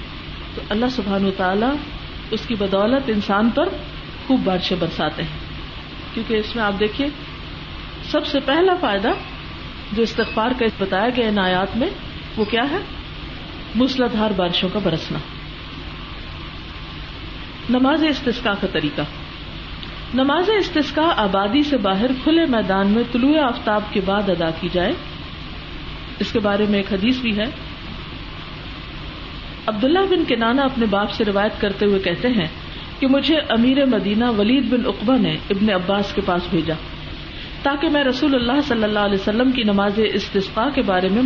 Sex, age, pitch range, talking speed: female, 50-69, 200-270 Hz, 145 wpm